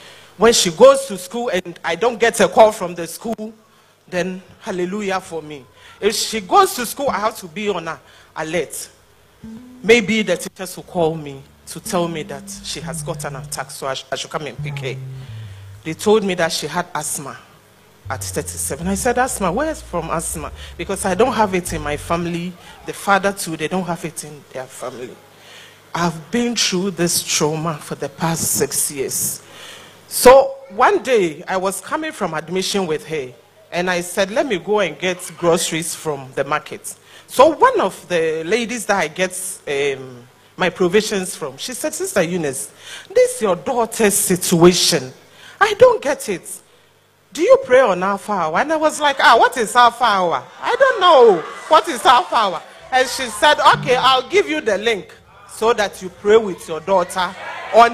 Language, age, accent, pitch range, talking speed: English, 40-59, Nigerian, 165-235 Hz, 190 wpm